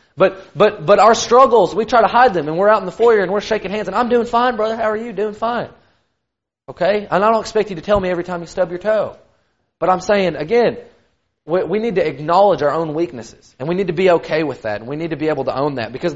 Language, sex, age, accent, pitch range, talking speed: English, male, 30-49, American, 160-210 Hz, 280 wpm